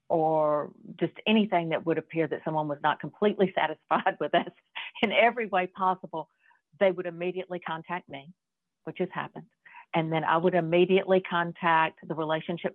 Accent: American